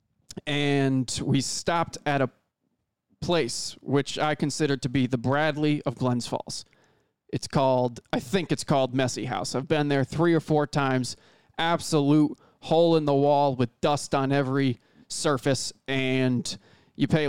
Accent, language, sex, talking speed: American, English, male, 155 wpm